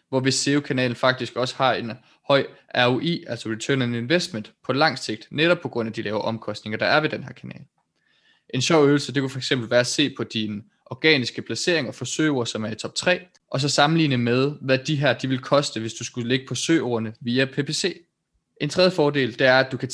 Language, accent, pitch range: Danish, native, 115-145 Hz